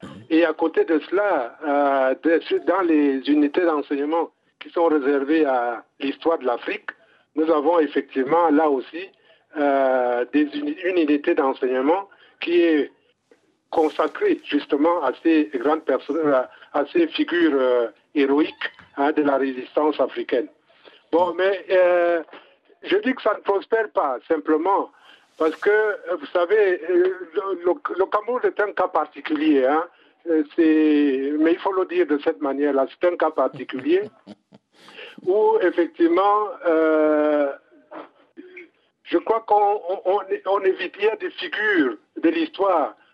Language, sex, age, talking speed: French, male, 50-69, 135 wpm